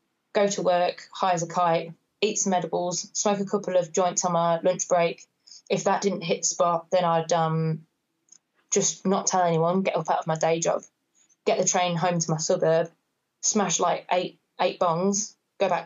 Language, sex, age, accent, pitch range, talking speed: English, female, 20-39, British, 165-200 Hz, 200 wpm